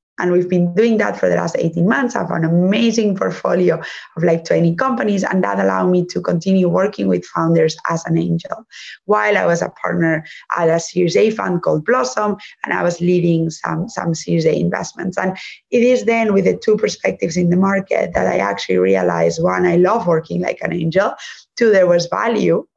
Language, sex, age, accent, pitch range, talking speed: English, female, 20-39, Spanish, 170-195 Hz, 205 wpm